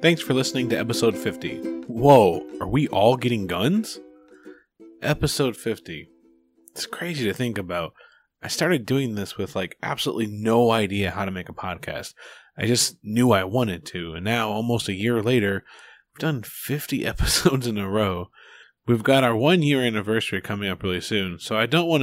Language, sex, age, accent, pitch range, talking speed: English, male, 20-39, American, 100-130 Hz, 175 wpm